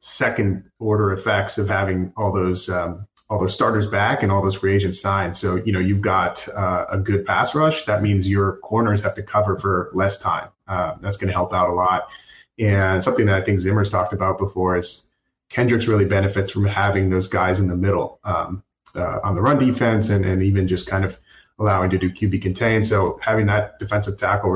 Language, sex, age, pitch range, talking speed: English, male, 30-49, 95-105 Hz, 215 wpm